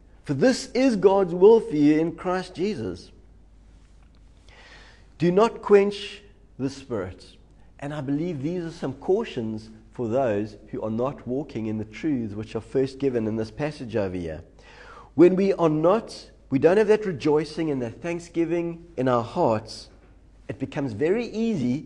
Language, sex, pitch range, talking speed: English, male, 105-170 Hz, 160 wpm